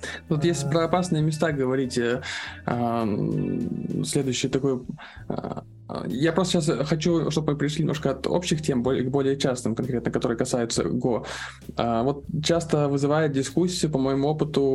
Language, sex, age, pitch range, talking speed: Russian, male, 20-39, 120-150 Hz, 130 wpm